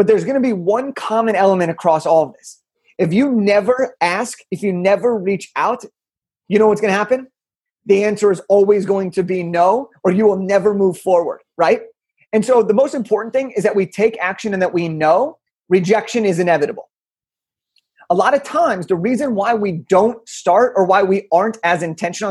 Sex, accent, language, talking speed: male, American, English, 205 wpm